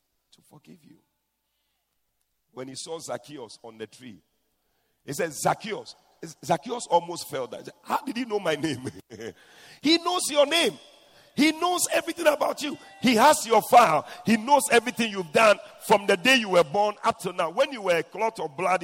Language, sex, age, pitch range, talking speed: English, male, 50-69, 175-260 Hz, 180 wpm